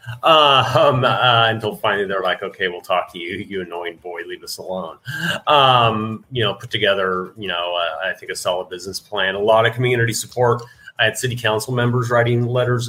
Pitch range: 105-120 Hz